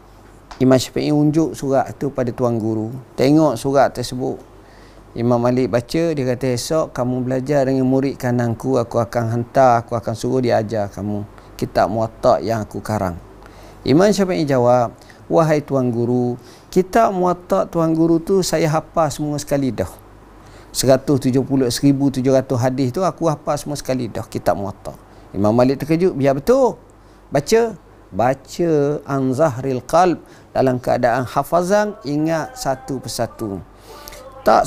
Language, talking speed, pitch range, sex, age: Malay, 135 wpm, 120-155 Hz, male, 50-69